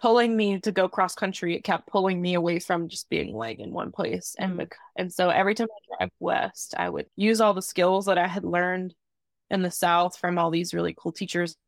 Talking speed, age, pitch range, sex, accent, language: 230 wpm, 20-39, 175-205 Hz, female, American, English